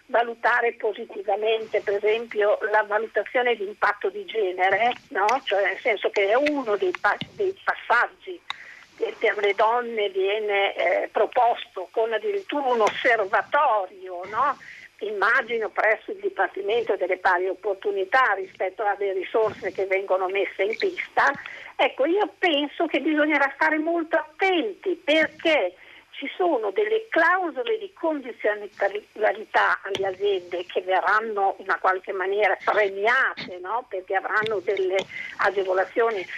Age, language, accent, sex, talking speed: 50-69, Italian, native, female, 125 wpm